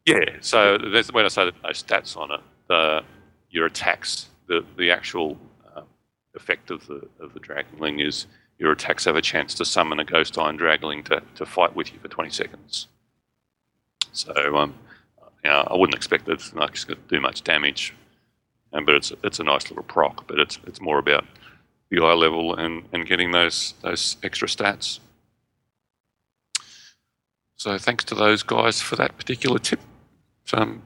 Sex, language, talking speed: male, English, 175 wpm